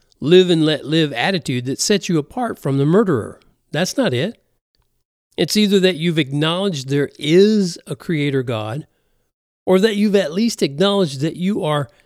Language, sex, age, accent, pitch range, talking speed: English, male, 50-69, American, 130-195 Hz, 160 wpm